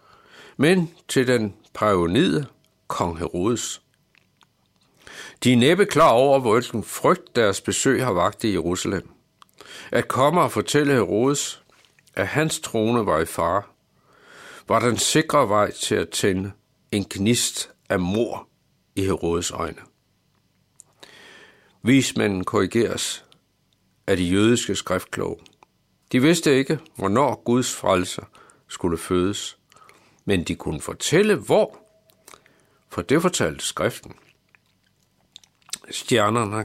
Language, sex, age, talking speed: Danish, male, 60-79, 110 wpm